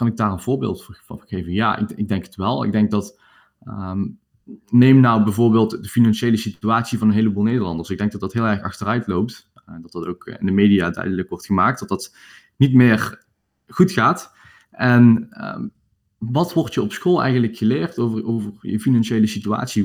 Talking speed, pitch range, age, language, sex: 200 wpm, 100-125 Hz, 20-39, Dutch, male